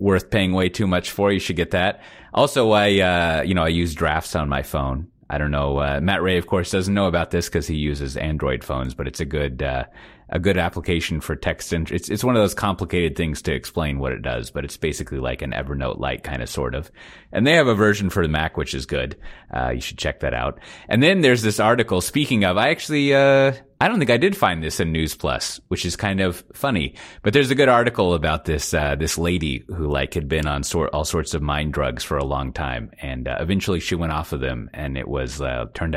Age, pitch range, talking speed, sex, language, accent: 30-49, 70-95 Hz, 255 wpm, male, English, American